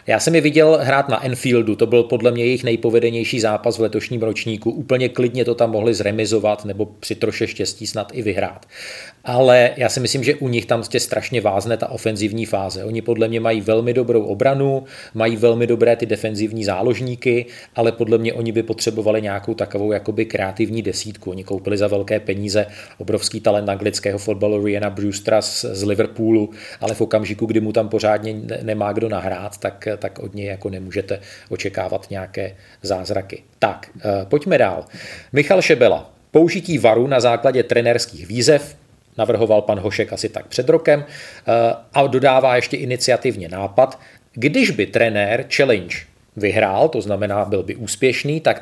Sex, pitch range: male, 105-120 Hz